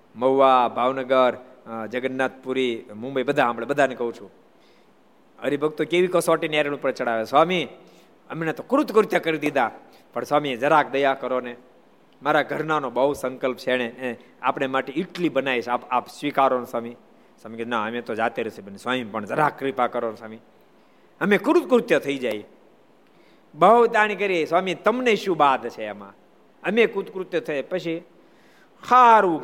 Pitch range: 130-210 Hz